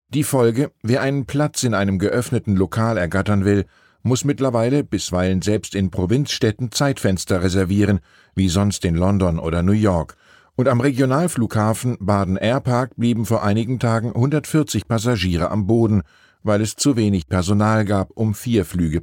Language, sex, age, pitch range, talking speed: German, male, 50-69, 95-125 Hz, 150 wpm